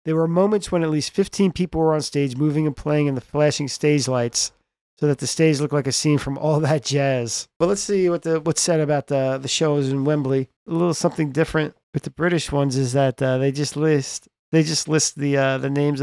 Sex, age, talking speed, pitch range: male, 40-59, 245 wpm, 135-160 Hz